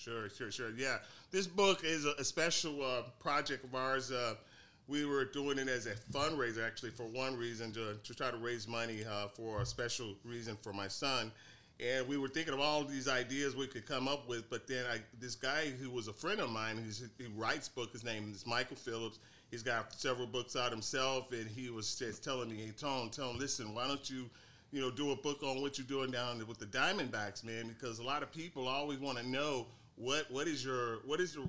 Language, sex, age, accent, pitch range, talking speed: English, male, 40-59, American, 115-140 Hz, 240 wpm